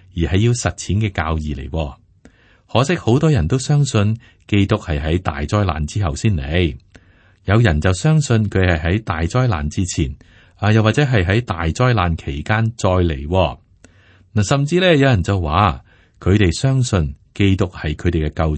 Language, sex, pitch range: Chinese, male, 85-115 Hz